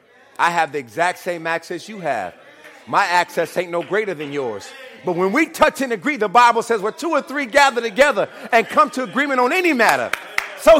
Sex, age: male, 40-59